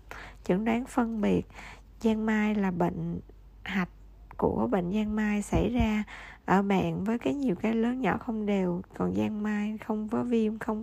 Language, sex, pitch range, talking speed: Vietnamese, female, 190-220 Hz, 175 wpm